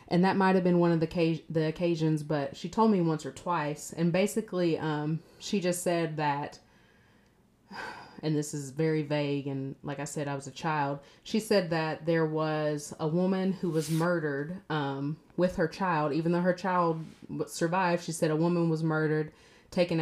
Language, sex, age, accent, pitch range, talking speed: English, female, 30-49, American, 150-175 Hz, 190 wpm